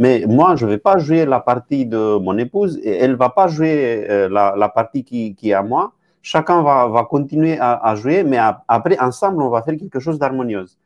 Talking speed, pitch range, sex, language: 230 wpm, 110-155 Hz, male, French